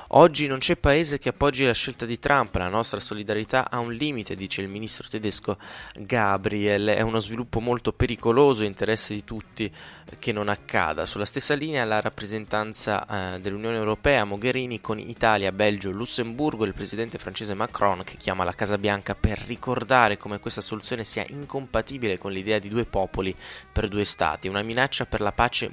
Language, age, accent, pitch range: Italian, 20-39, native, 100-125 Hz